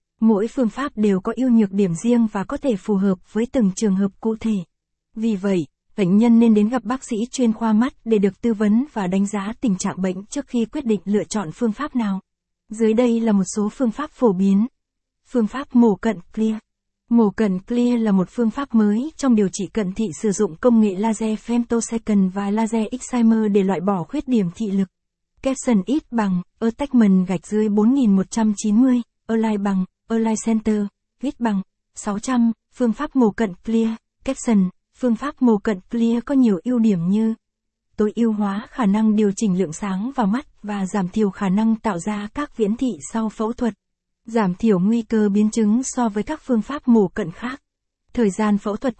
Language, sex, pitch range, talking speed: Vietnamese, female, 205-240 Hz, 200 wpm